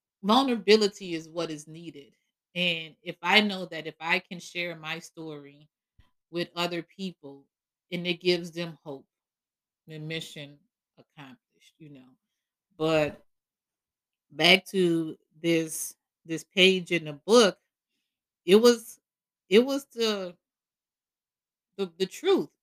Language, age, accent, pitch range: English, 30-49, American, 160-205 Hz